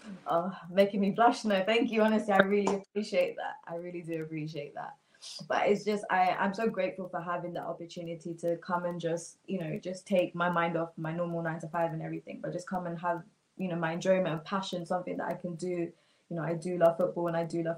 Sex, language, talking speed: female, English, 235 wpm